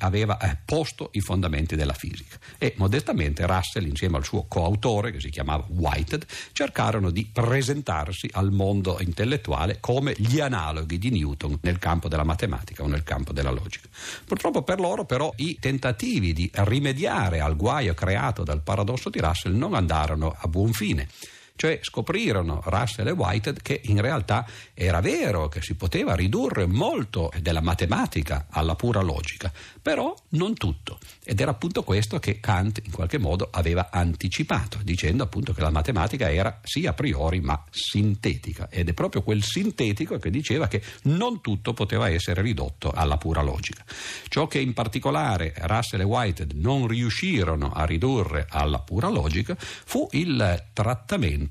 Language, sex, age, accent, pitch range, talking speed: Italian, male, 50-69, native, 85-110 Hz, 155 wpm